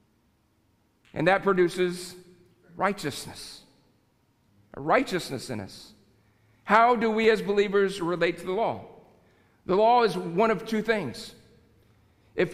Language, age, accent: English, 50-69, American